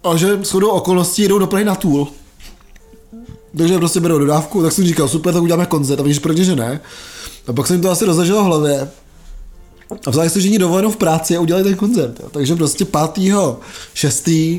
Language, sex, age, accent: Czech, male, 20-39, native